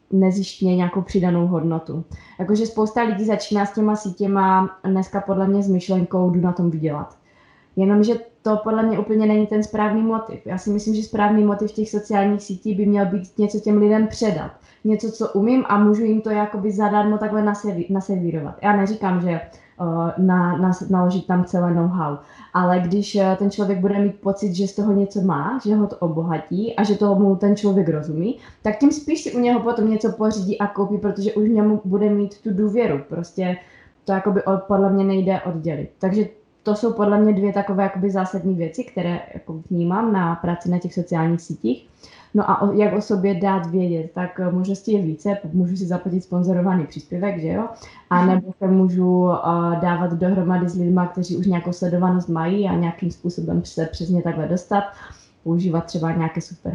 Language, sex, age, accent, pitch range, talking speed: Czech, female, 20-39, native, 175-210 Hz, 190 wpm